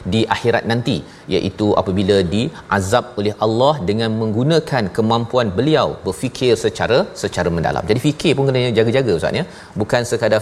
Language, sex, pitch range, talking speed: Malayalam, male, 105-135 Hz, 145 wpm